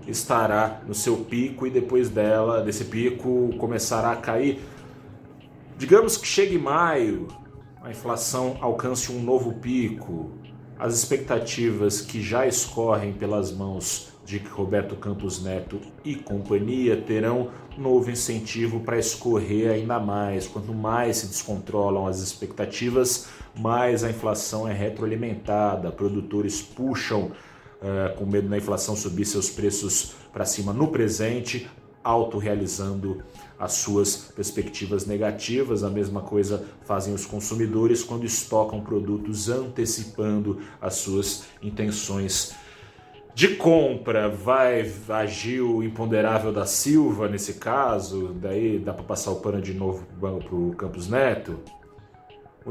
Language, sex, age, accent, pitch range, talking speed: Portuguese, male, 30-49, Brazilian, 100-120 Hz, 125 wpm